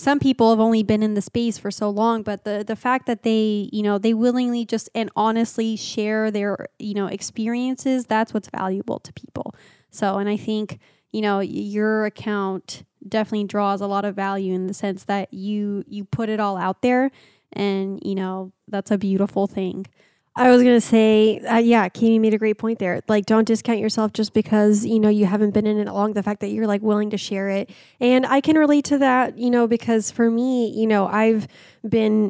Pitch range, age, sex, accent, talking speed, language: 205-235 Hz, 10-29, female, American, 215 wpm, English